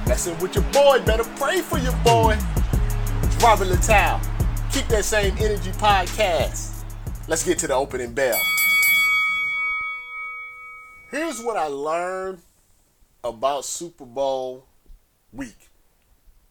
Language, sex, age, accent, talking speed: English, male, 30-49, American, 115 wpm